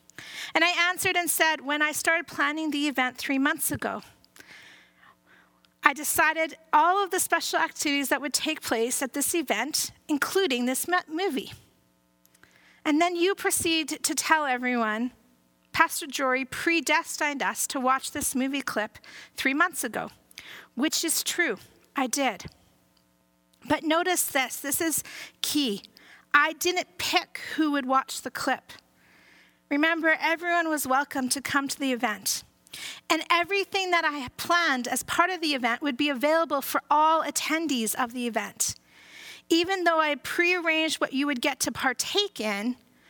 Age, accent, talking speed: 40-59, American, 150 wpm